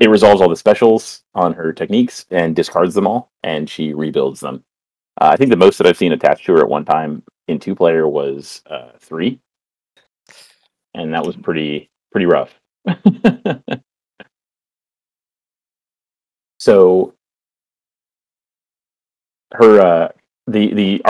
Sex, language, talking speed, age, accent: male, English, 130 wpm, 30-49, American